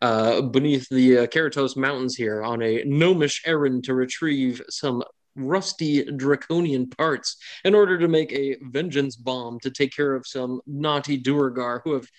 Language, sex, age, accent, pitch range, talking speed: English, male, 30-49, American, 120-150 Hz, 160 wpm